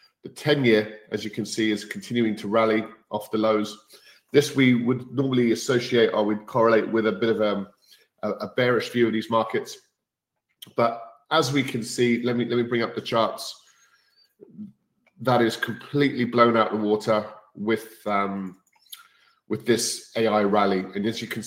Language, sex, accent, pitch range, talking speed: English, male, British, 110-125 Hz, 175 wpm